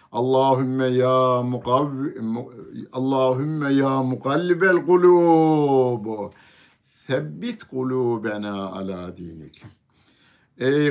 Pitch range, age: 100-135 Hz, 60-79